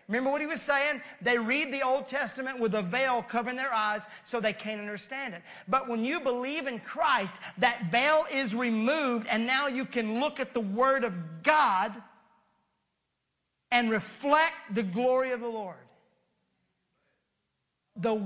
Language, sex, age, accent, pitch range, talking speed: English, male, 40-59, American, 225-280 Hz, 160 wpm